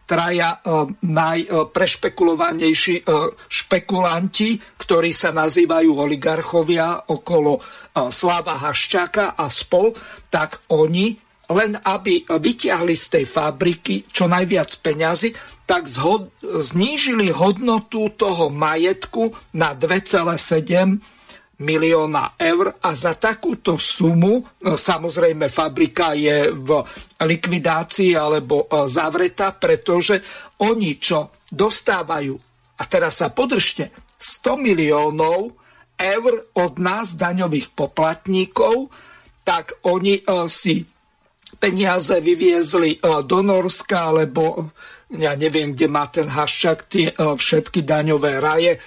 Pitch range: 160-205 Hz